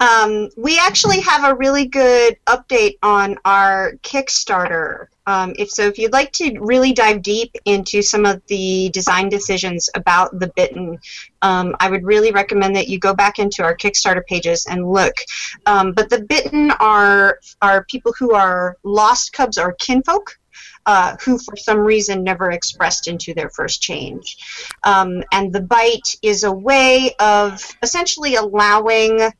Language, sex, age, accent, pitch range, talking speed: English, female, 30-49, American, 195-255 Hz, 160 wpm